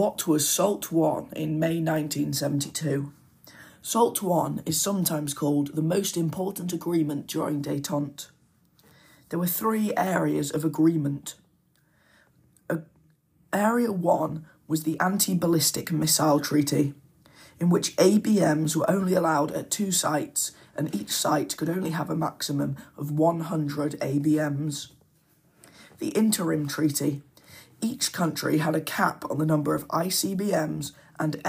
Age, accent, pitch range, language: 20-39, British, 150-175 Hz, English